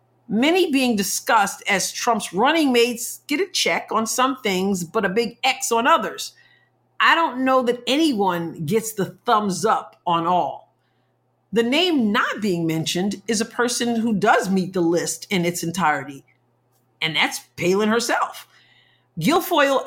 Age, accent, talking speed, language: 50-69, American, 155 wpm, English